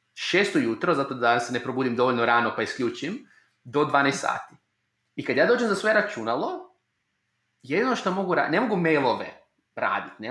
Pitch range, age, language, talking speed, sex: 130-180 Hz, 30-49, Croatian, 175 wpm, male